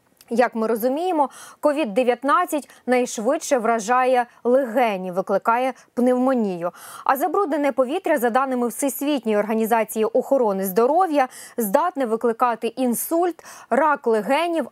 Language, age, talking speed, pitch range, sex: Ukrainian, 20-39, 95 wpm, 225-290 Hz, female